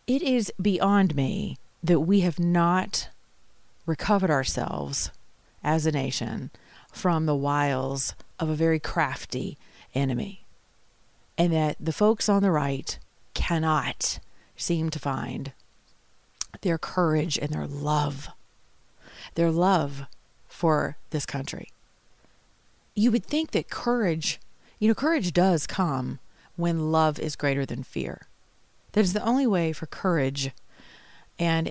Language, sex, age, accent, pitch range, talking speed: English, female, 40-59, American, 150-195 Hz, 125 wpm